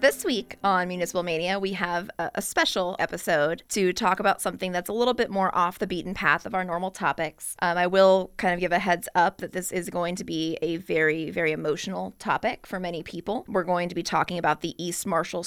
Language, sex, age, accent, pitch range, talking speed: English, female, 20-39, American, 175-200 Hz, 230 wpm